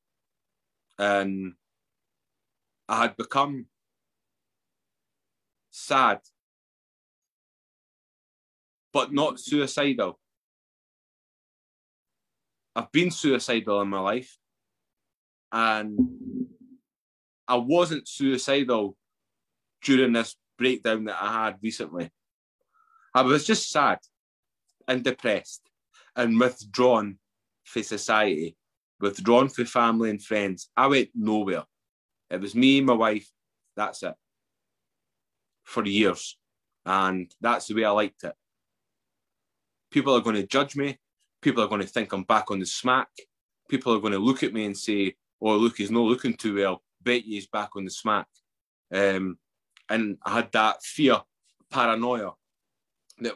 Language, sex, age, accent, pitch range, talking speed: English, male, 30-49, British, 100-125 Hz, 120 wpm